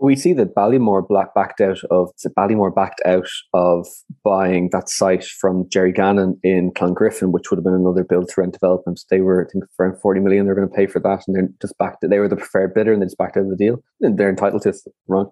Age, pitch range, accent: 20-39, 90-100 Hz, Irish